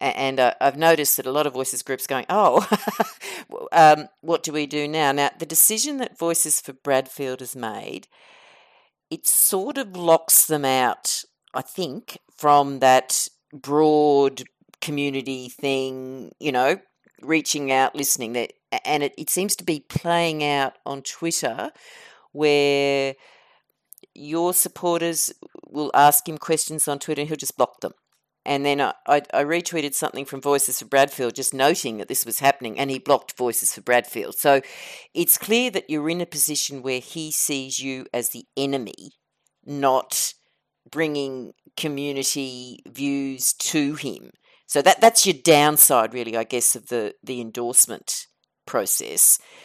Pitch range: 135-165 Hz